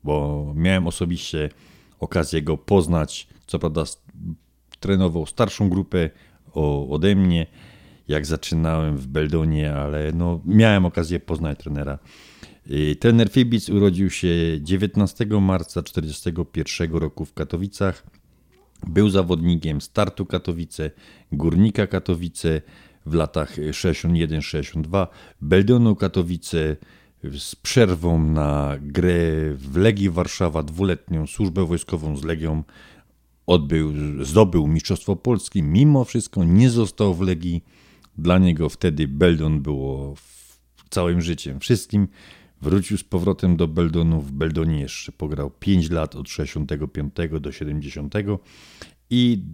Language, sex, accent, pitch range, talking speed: Polish, male, native, 75-95 Hz, 110 wpm